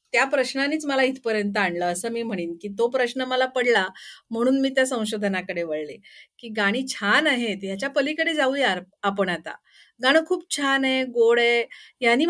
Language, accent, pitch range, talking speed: Marathi, native, 205-275 Hz, 165 wpm